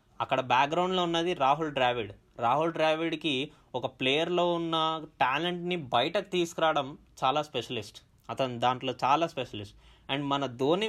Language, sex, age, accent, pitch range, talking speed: Telugu, male, 20-39, native, 125-165 Hz, 120 wpm